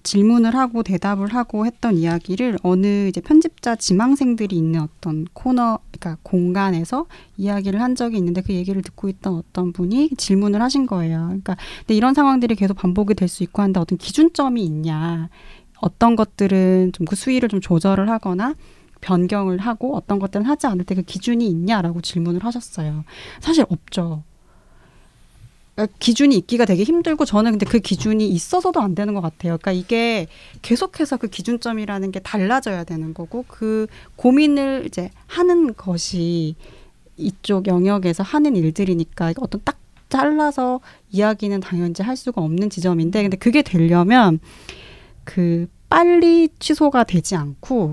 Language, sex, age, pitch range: Korean, female, 30-49, 180-240 Hz